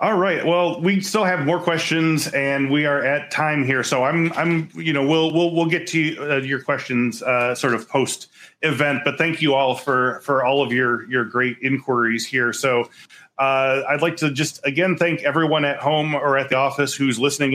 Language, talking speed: English, 210 wpm